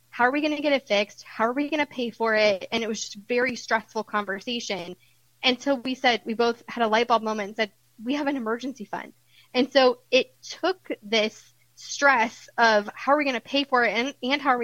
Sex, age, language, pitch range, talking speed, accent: female, 10-29, English, 215-260 Hz, 240 wpm, American